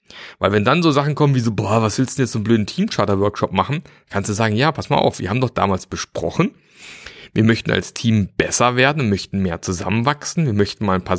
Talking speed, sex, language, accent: 240 wpm, male, German, German